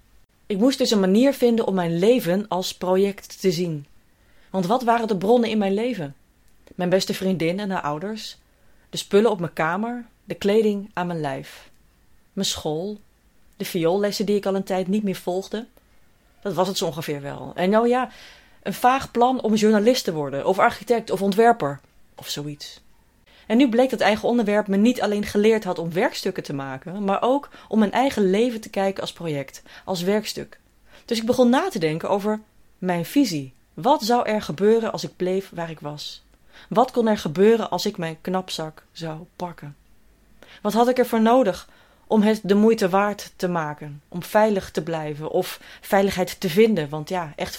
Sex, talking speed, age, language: female, 190 wpm, 30-49, Dutch